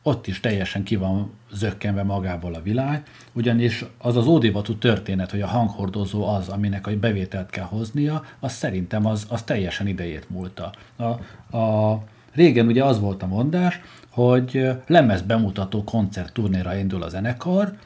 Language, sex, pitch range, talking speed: Hungarian, male, 100-125 Hz, 150 wpm